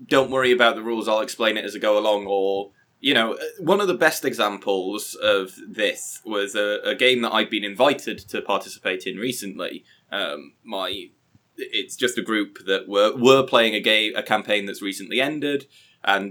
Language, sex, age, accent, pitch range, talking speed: English, male, 20-39, British, 95-115 Hz, 190 wpm